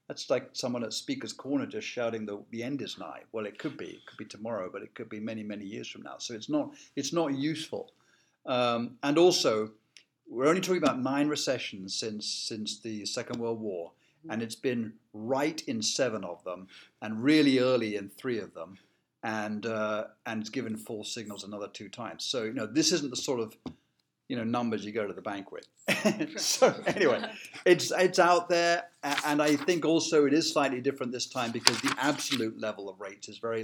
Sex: male